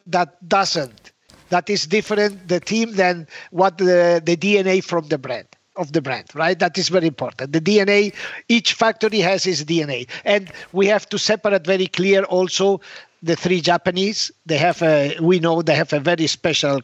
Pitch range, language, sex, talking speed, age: 165-205 Hz, English, male, 180 wpm, 50-69